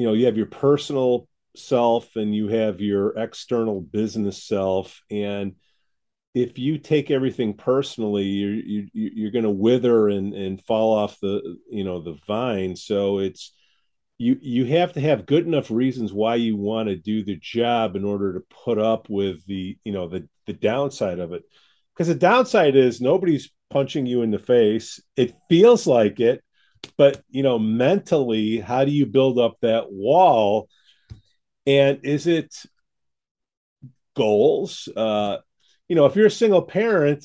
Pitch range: 110-160 Hz